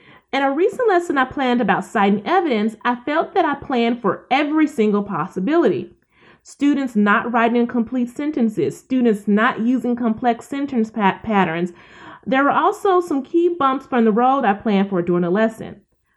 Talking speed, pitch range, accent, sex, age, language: 165 wpm, 200-295 Hz, American, female, 30-49, English